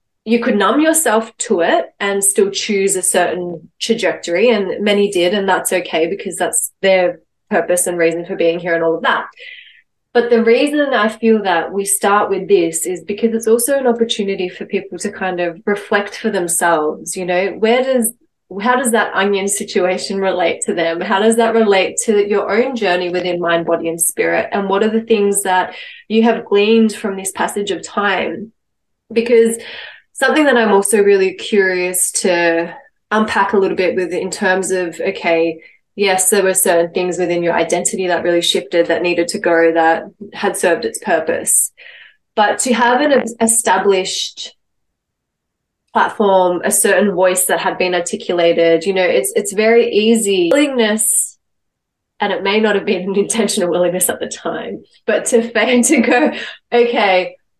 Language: English